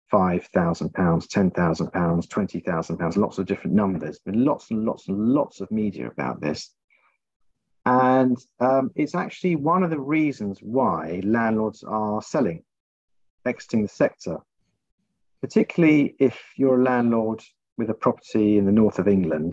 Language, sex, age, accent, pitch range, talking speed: English, male, 50-69, British, 100-135 Hz, 140 wpm